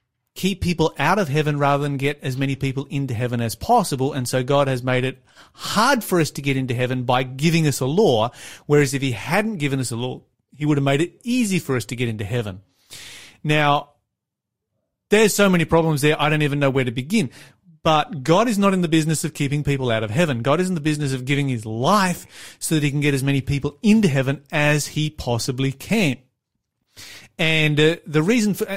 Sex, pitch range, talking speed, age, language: male, 130-175 Hz, 225 wpm, 30-49, English